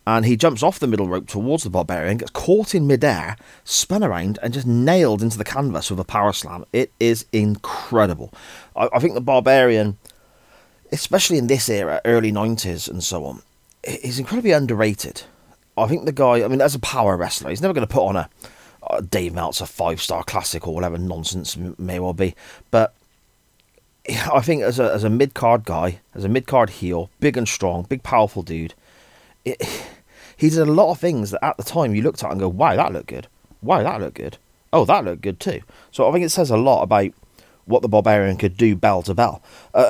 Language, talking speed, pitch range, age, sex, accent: English, 205 wpm, 90-120 Hz, 30-49, male, British